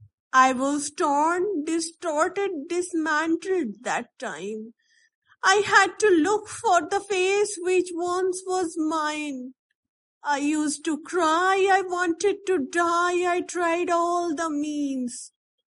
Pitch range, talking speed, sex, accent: 285-375 Hz, 120 wpm, female, Indian